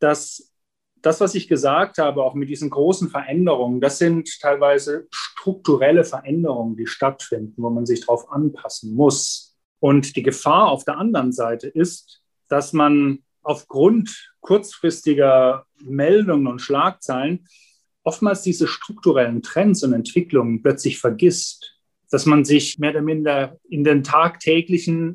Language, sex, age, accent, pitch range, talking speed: German, male, 30-49, German, 145-190 Hz, 135 wpm